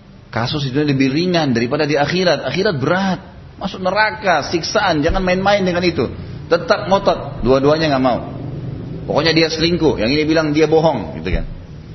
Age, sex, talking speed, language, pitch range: 30-49, male, 160 wpm, Indonesian, 115-150 Hz